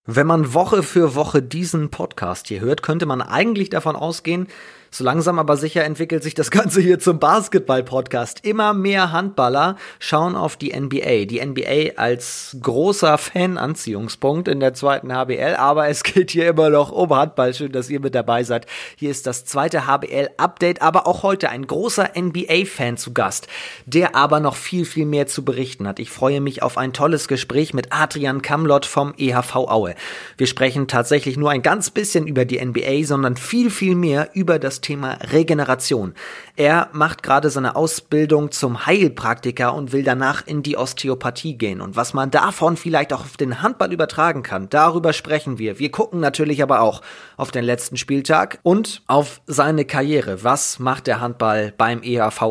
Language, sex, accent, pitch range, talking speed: German, male, German, 130-165 Hz, 175 wpm